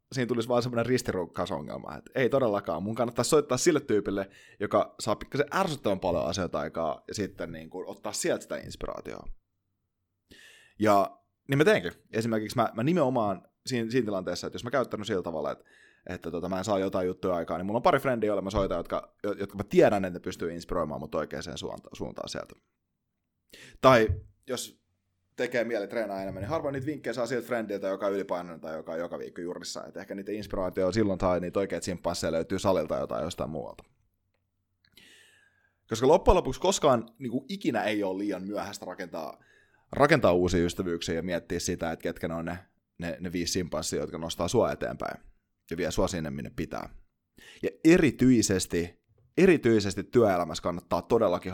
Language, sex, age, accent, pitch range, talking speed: Finnish, male, 20-39, native, 90-115 Hz, 175 wpm